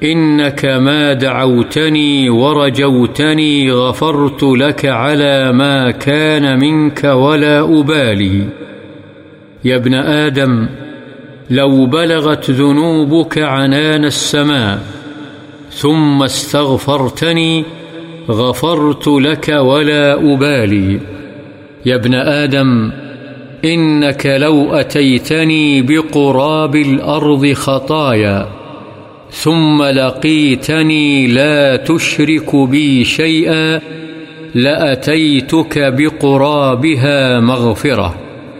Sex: male